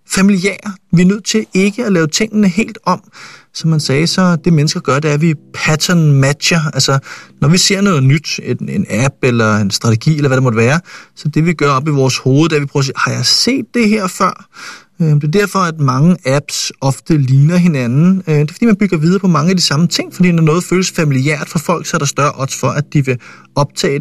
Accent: native